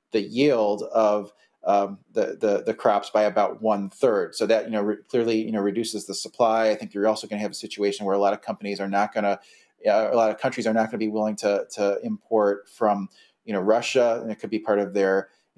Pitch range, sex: 100-115 Hz, male